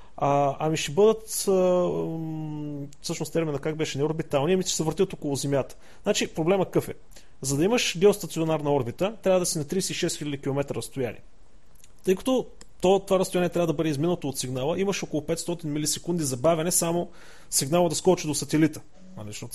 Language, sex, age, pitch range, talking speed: Bulgarian, male, 30-49, 145-190 Hz, 180 wpm